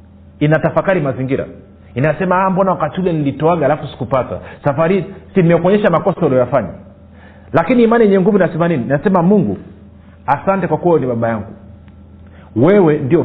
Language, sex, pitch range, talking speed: Swahili, male, 135-195 Hz, 130 wpm